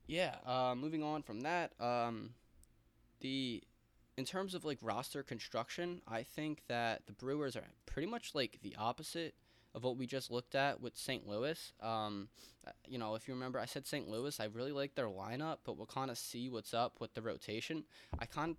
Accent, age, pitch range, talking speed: American, 10-29, 110-125 Hz, 195 wpm